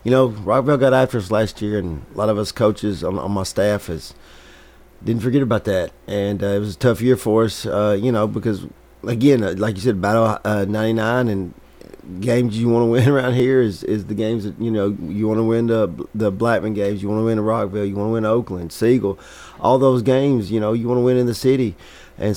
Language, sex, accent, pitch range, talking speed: English, male, American, 100-115 Hz, 245 wpm